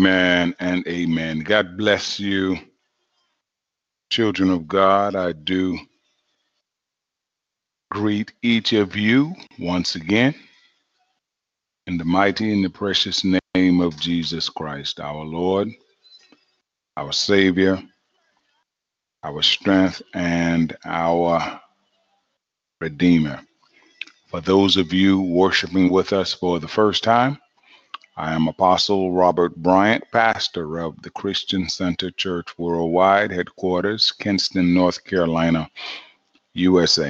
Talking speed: 105 wpm